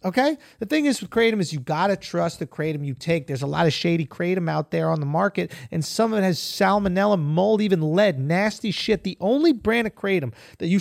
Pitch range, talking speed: 170-235 Hz, 245 wpm